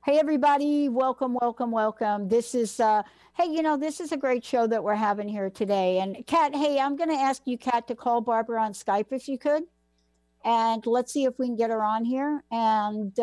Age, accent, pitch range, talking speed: 60-79, American, 200-250 Hz, 220 wpm